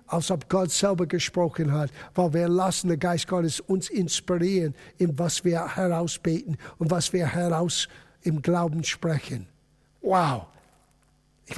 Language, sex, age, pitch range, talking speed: German, male, 50-69, 175-250 Hz, 140 wpm